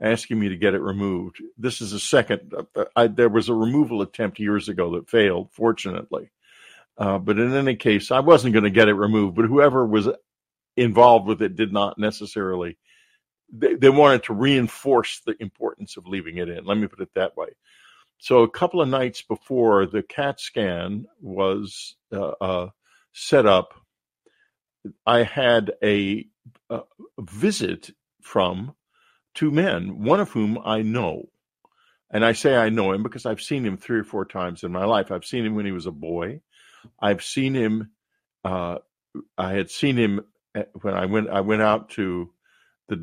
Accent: American